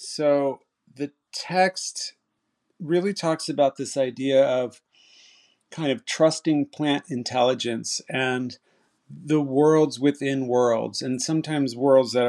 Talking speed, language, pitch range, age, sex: 110 wpm, English, 115-135 Hz, 40-59, male